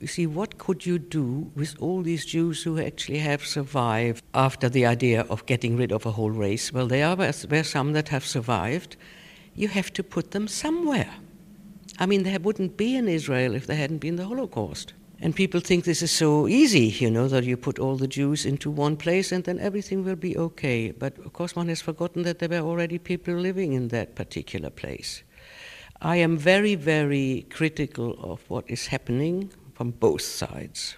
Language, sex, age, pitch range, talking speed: English, female, 60-79, 130-175 Hz, 200 wpm